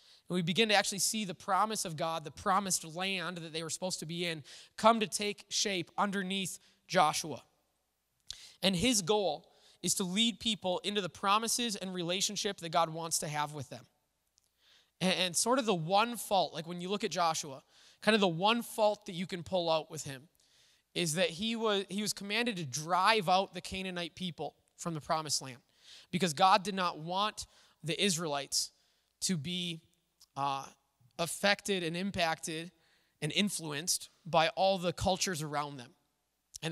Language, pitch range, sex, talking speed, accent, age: English, 160-205 Hz, male, 180 wpm, American, 20-39